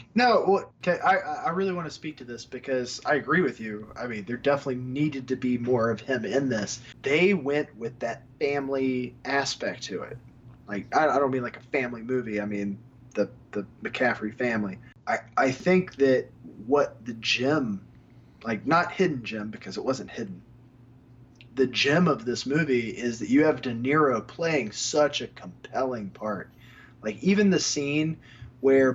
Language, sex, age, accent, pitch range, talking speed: English, male, 20-39, American, 120-140 Hz, 180 wpm